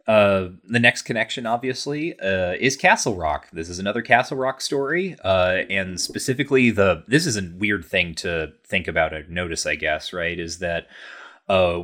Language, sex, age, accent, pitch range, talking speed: English, male, 30-49, American, 95-125 Hz, 175 wpm